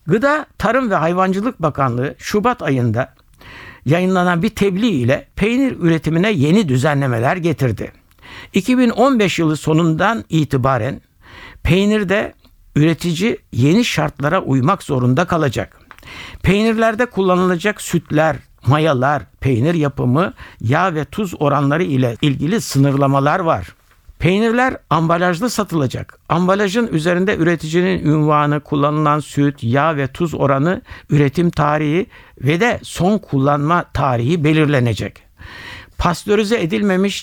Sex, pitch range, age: male, 130-180 Hz, 60-79